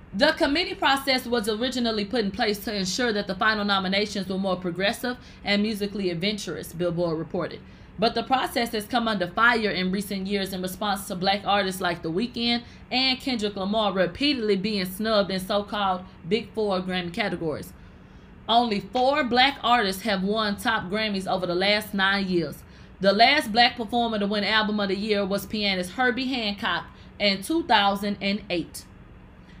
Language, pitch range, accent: English, 190-230 Hz, American